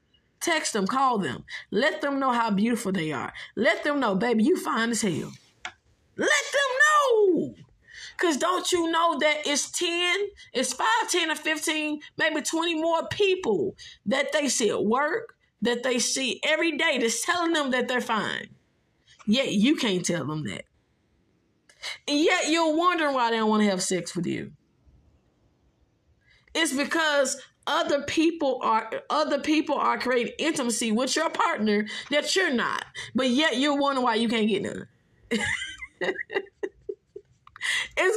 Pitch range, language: 230-330 Hz, English